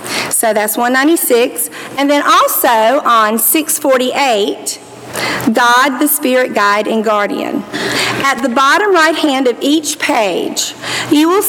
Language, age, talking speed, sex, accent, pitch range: English, 50-69, 125 wpm, female, American, 225-290 Hz